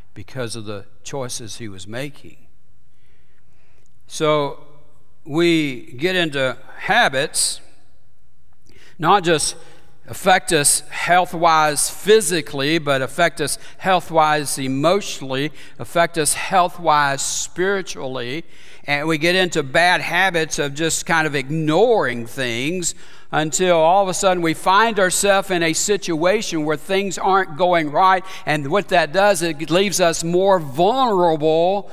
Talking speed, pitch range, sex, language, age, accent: 125 wpm, 145-200 Hz, male, English, 60-79, American